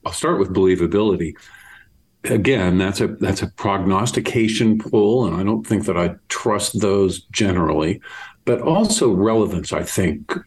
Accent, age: American, 50-69